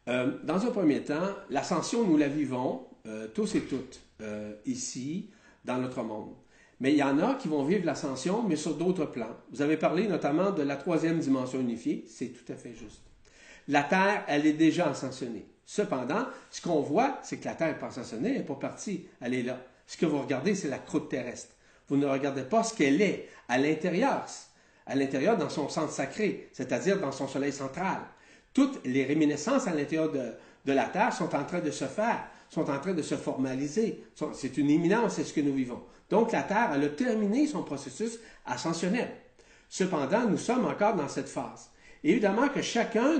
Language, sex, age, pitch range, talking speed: French, male, 50-69, 135-210 Hz, 200 wpm